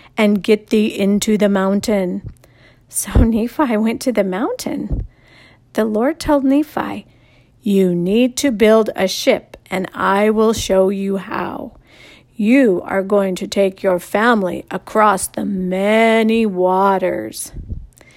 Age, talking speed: 50-69, 130 wpm